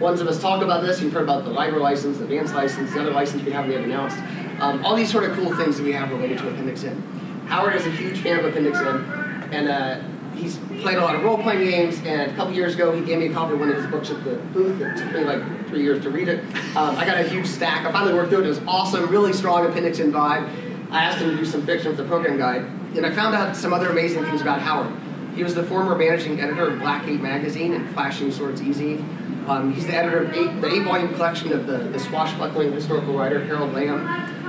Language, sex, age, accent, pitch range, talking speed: English, male, 30-49, American, 145-180 Hz, 260 wpm